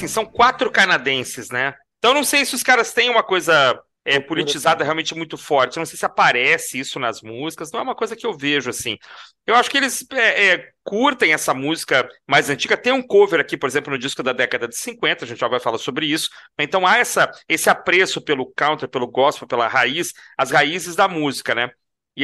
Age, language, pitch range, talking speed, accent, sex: 40-59, Portuguese, 145-230 Hz, 205 wpm, Brazilian, male